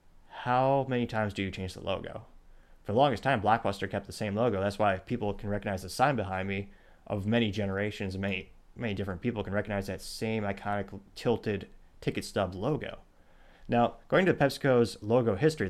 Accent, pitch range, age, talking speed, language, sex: American, 95-120 Hz, 30-49, 185 wpm, English, male